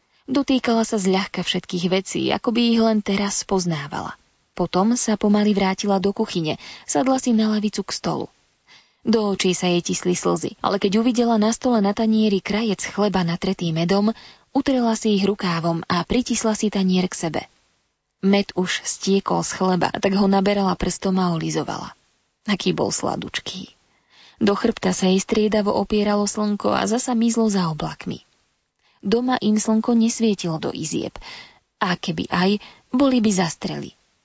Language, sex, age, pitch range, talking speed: Slovak, female, 20-39, 185-220 Hz, 155 wpm